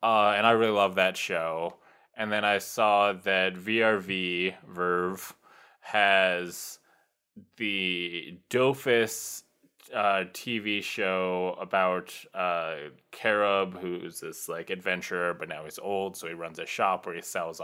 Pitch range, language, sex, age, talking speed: 95-120 Hz, English, male, 20-39, 135 wpm